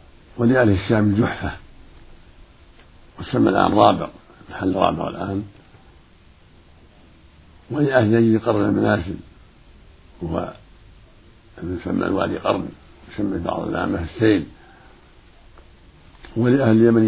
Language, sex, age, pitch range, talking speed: Arabic, male, 60-79, 90-115 Hz, 75 wpm